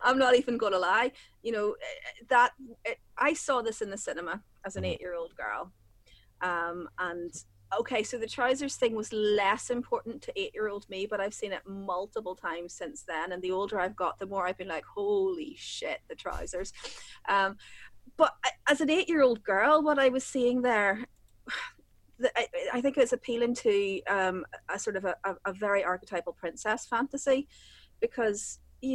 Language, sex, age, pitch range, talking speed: English, female, 30-49, 185-255 Hz, 180 wpm